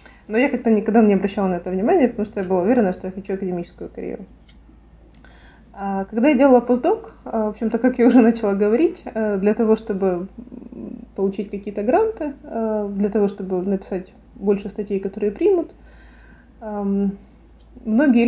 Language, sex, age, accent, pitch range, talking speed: Ukrainian, female, 20-39, native, 195-235 Hz, 150 wpm